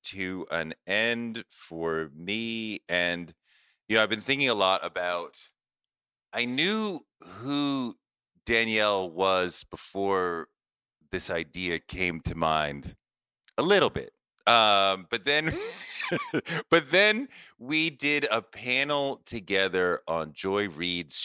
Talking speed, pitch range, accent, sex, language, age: 115 wpm, 85-125 Hz, American, male, English, 40-59